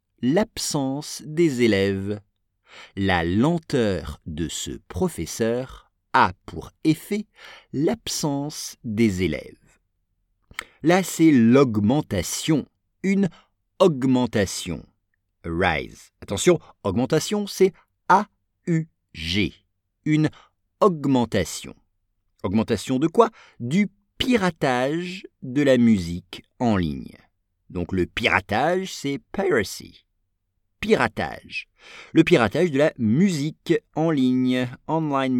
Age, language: 50-69, English